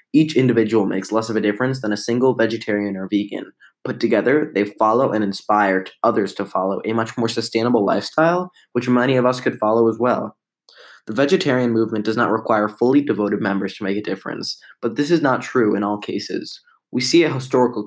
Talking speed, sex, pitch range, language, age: 200 wpm, male, 110-125 Hz, English, 10-29